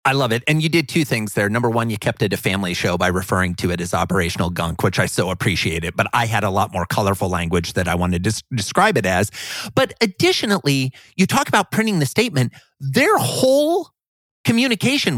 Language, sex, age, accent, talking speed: English, male, 30-49, American, 220 wpm